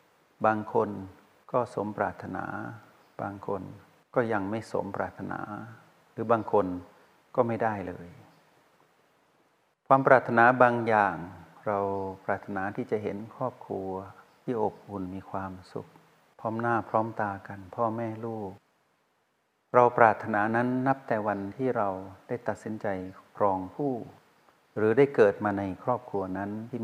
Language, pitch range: Thai, 100-120 Hz